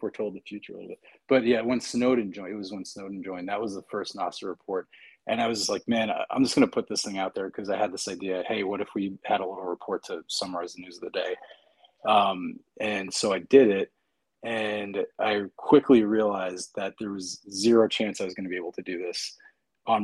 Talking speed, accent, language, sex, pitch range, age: 245 wpm, American, English, male, 95-115 Hz, 30-49